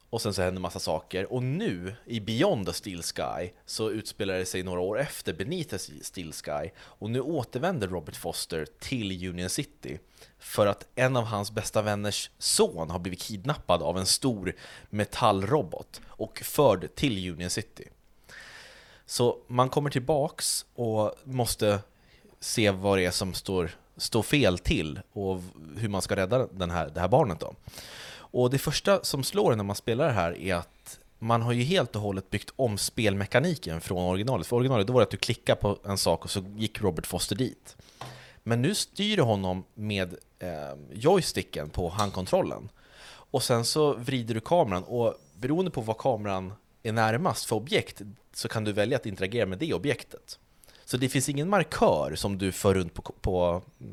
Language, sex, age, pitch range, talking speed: Swedish, male, 30-49, 95-120 Hz, 180 wpm